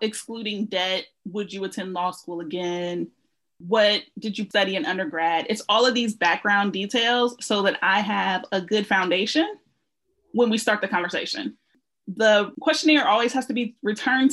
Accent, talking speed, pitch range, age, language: American, 165 wpm, 195-250 Hz, 20-39, English